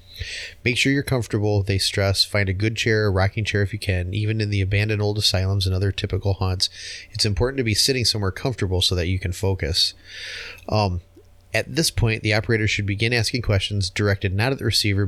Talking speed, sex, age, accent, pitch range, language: 210 wpm, male, 30-49, American, 95-110 Hz, English